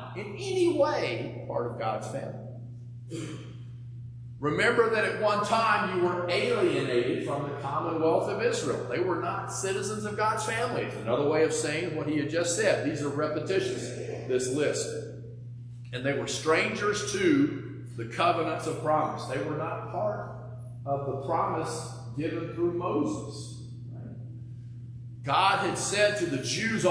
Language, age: English, 40-59